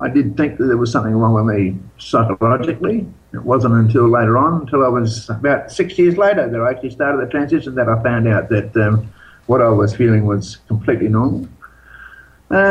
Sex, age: male, 50-69